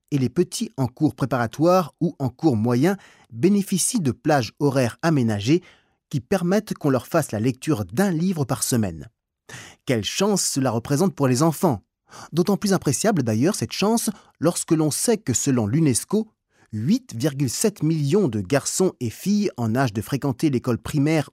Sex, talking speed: male, 160 wpm